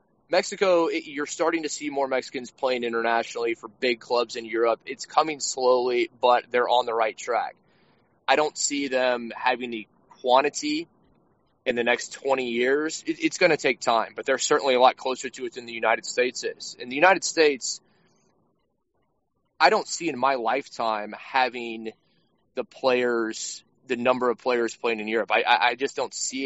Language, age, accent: English, 20-39, American